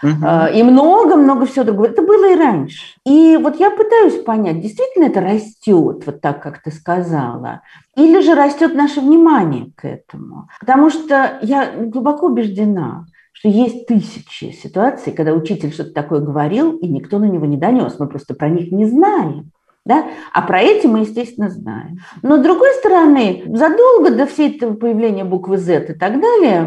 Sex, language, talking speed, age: female, Russian, 170 wpm, 50-69